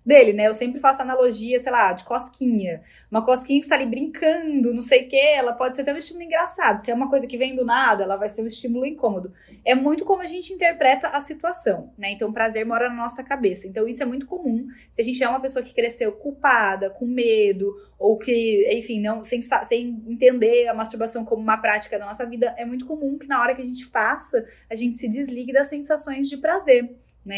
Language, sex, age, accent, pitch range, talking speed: Portuguese, female, 20-39, Brazilian, 220-280 Hz, 235 wpm